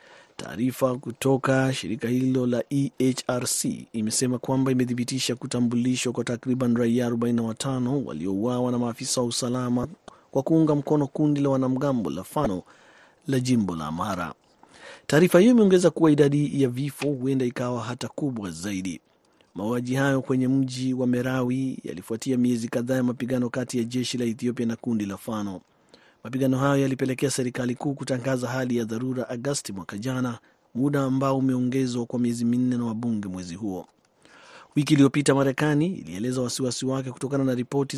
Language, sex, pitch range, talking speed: Swahili, male, 120-135 Hz, 145 wpm